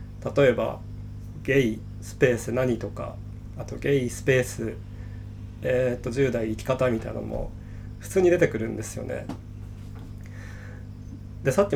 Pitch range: 100-130 Hz